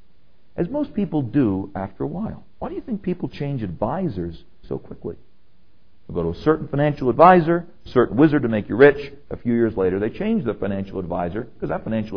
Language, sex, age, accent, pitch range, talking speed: English, male, 50-69, American, 105-155 Hz, 205 wpm